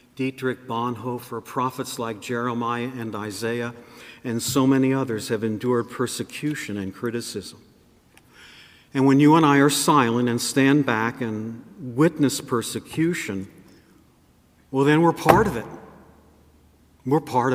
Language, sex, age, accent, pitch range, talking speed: English, male, 50-69, American, 110-135 Hz, 125 wpm